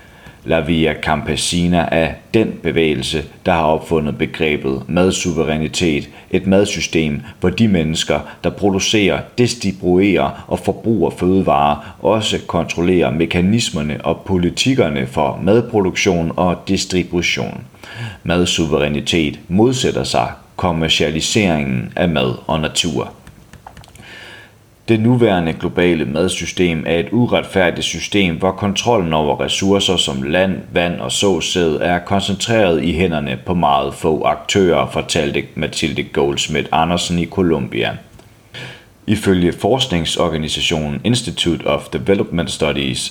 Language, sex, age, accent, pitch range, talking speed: Danish, male, 40-59, native, 80-95 Hz, 105 wpm